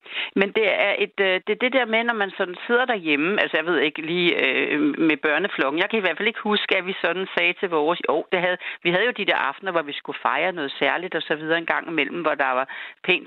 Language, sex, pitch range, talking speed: Danish, female, 170-235 Hz, 260 wpm